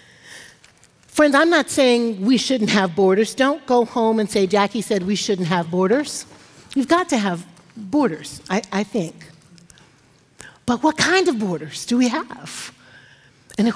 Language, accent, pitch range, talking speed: English, American, 195-280 Hz, 155 wpm